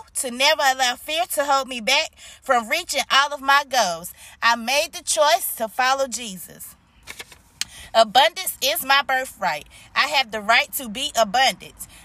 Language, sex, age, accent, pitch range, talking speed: English, female, 20-39, American, 215-275 Hz, 160 wpm